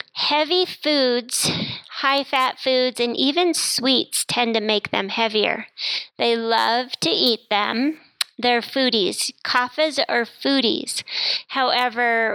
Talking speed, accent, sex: 110 wpm, American, female